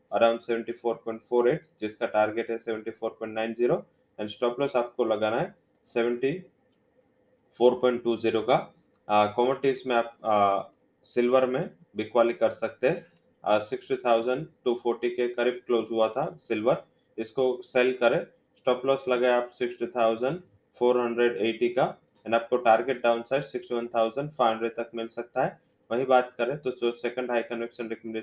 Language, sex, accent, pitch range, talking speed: English, male, Indian, 115-125 Hz, 95 wpm